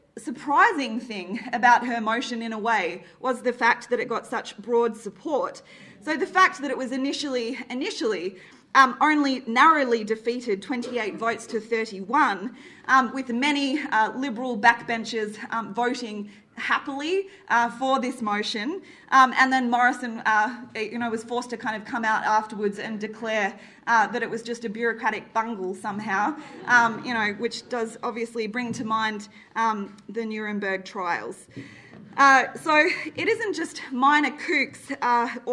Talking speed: 155 wpm